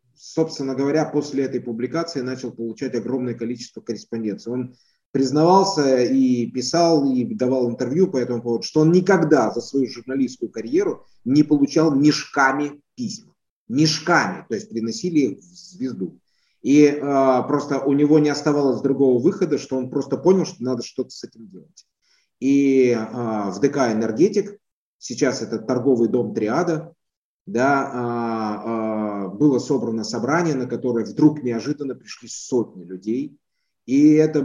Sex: male